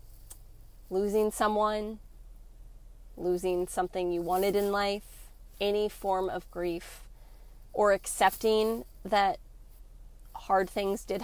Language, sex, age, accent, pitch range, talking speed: English, female, 20-39, American, 180-225 Hz, 95 wpm